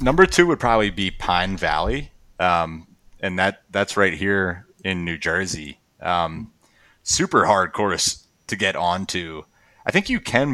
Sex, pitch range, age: male, 85-105 Hz, 30-49